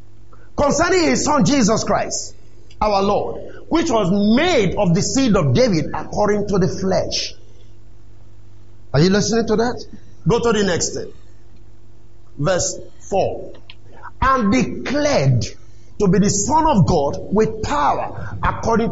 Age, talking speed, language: 50-69, 135 wpm, English